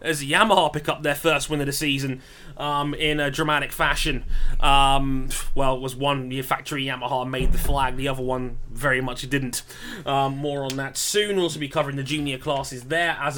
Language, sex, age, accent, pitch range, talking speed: English, male, 20-39, British, 140-170 Hz, 200 wpm